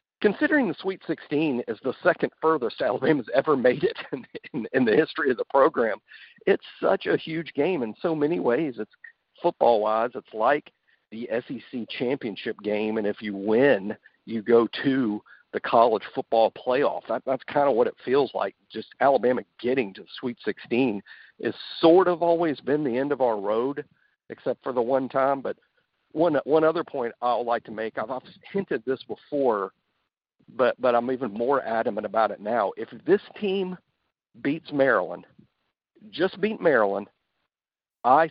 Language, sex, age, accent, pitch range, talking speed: English, male, 50-69, American, 120-175 Hz, 175 wpm